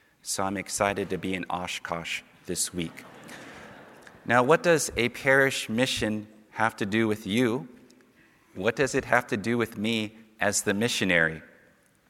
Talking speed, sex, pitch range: 155 wpm, male, 95-115 Hz